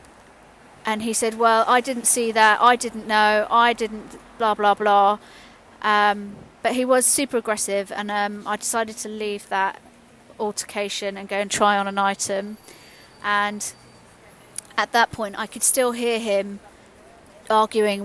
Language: English